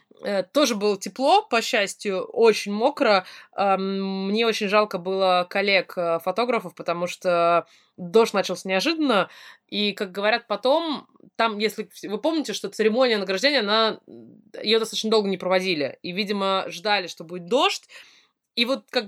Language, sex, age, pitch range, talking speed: Russian, female, 20-39, 180-235 Hz, 140 wpm